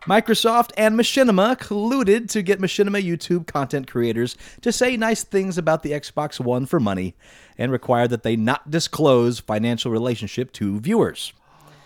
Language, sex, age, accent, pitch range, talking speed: English, male, 30-49, American, 110-165 Hz, 150 wpm